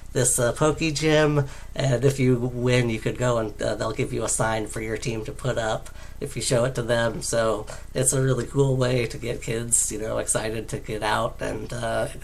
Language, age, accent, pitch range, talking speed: English, 40-59, American, 115-135 Hz, 230 wpm